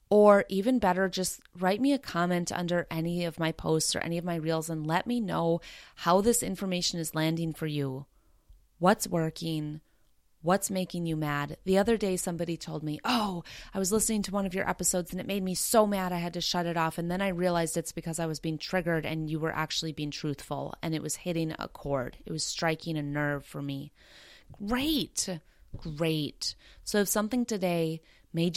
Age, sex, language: 30-49, female, English